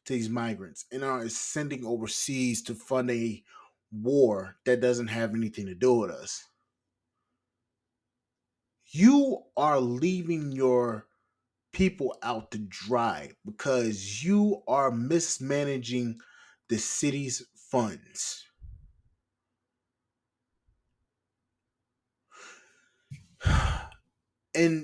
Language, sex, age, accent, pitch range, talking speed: English, male, 20-39, American, 115-140 Hz, 80 wpm